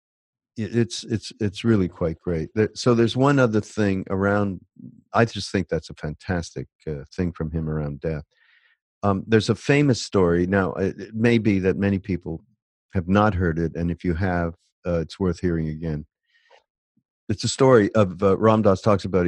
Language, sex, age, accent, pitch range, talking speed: English, male, 50-69, American, 85-110 Hz, 180 wpm